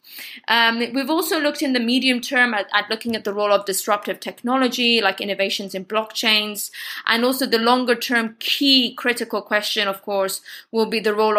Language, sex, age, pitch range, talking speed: English, female, 20-39, 205-240 Hz, 185 wpm